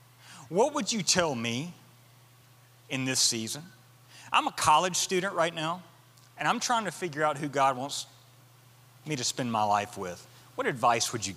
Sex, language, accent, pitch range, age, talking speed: male, English, American, 115-150 Hz, 30-49, 175 wpm